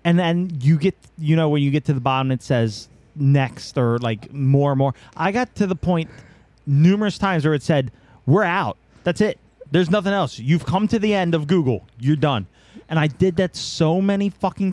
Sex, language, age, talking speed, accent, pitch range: male, English, 30-49, 215 wpm, American, 125-170 Hz